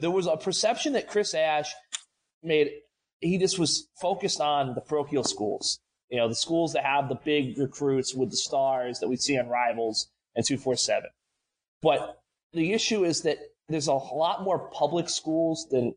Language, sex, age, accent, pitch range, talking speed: English, male, 30-49, American, 135-175 Hz, 175 wpm